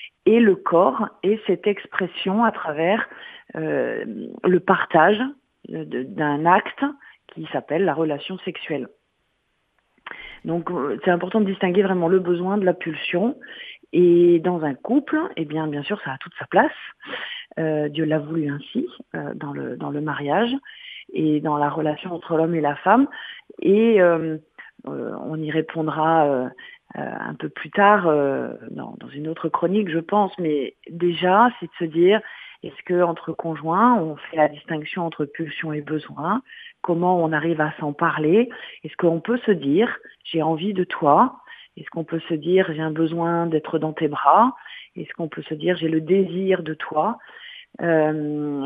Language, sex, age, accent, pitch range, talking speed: French, female, 40-59, French, 155-205 Hz, 170 wpm